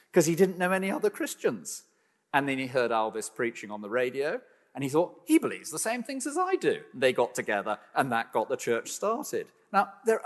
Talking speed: 220 wpm